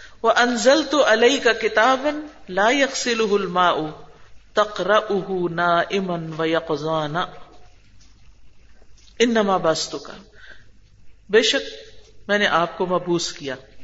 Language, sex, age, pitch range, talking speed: Urdu, female, 50-69, 170-230 Hz, 95 wpm